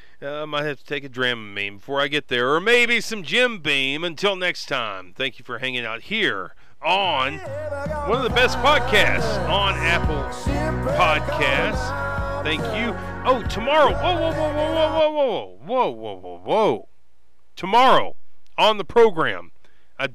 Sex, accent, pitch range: male, American, 130-190 Hz